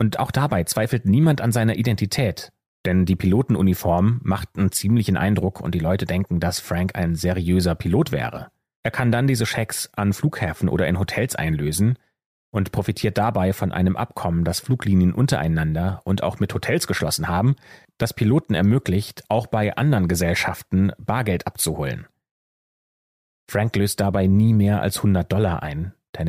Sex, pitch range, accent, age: male, 90-115 Hz, German, 30-49